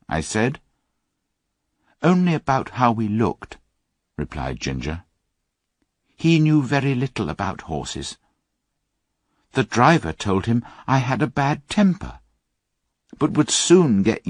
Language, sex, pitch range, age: Chinese, male, 90-140 Hz, 60-79